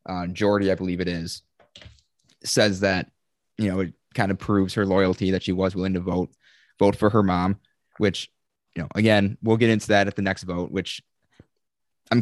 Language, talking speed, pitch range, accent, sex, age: English, 195 wpm, 90-115 Hz, American, male, 20-39